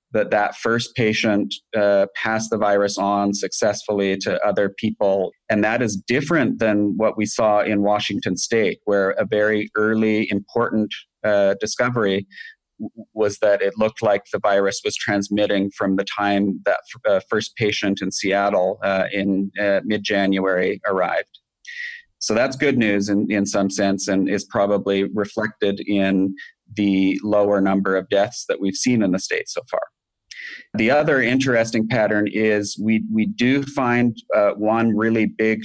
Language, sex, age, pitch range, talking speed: English, male, 30-49, 100-115 Hz, 155 wpm